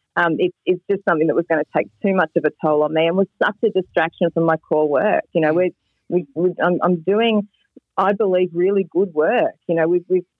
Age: 30-49